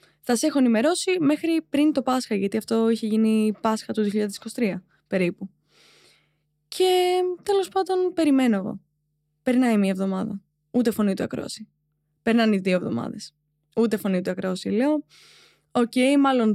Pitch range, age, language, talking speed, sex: 195-270 Hz, 20-39, Greek, 140 wpm, female